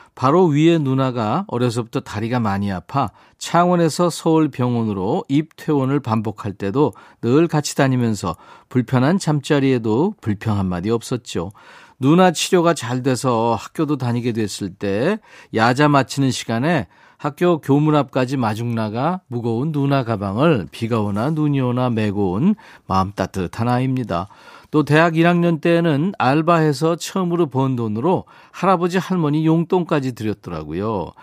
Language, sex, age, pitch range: Korean, male, 40-59, 115-160 Hz